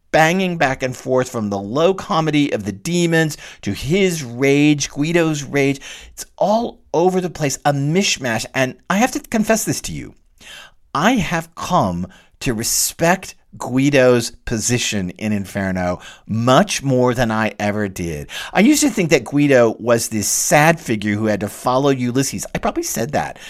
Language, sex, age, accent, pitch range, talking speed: English, male, 50-69, American, 125-185 Hz, 165 wpm